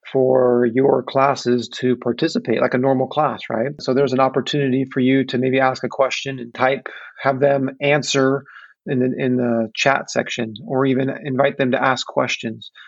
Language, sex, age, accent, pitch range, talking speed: English, male, 30-49, American, 130-145 Hz, 180 wpm